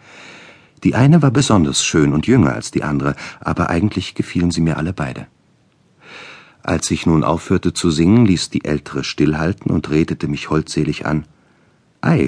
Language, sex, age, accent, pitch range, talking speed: German, male, 50-69, German, 75-110 Hz, 160 wpm